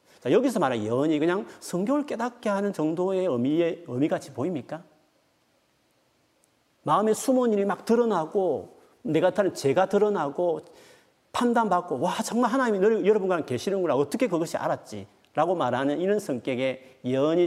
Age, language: 40-59, Korean